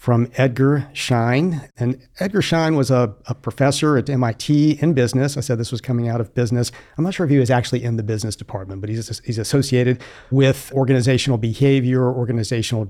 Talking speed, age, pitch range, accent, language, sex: 190 wpm, 50-69, 115-135 Hz, American, English, male